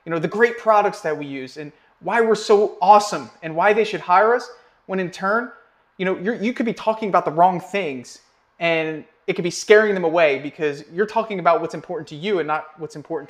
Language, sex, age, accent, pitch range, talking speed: English, male, 30-49, American, 155-195 Hz, 235 wpm